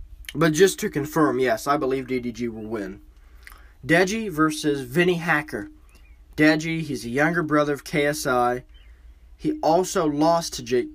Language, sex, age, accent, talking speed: English, male, 20-39, American, 145 wpm